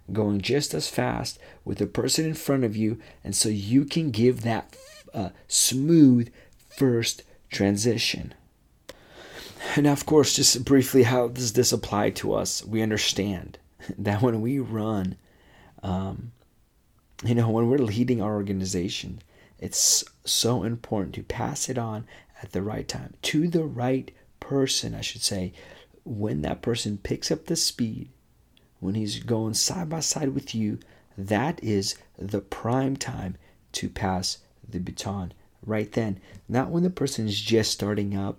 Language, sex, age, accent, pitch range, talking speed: English, male, 40-59, American, 95-120 Hz, 155 wpm